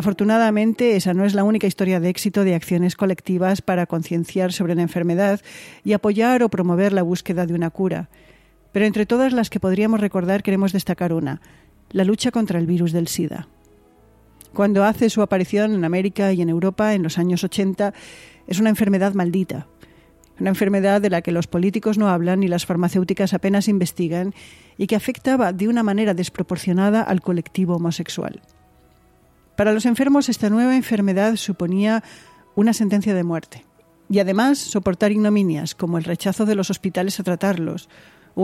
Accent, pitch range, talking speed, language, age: Spanish, 175-210 Hz, 170 wpm, Spanish, 40-59